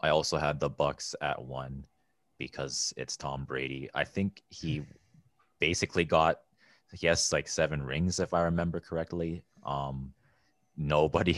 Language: English